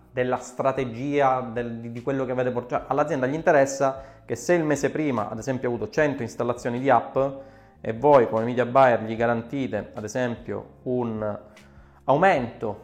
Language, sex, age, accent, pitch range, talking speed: Italian, male, 20-39, native, 120-145 Hz, 160 wpm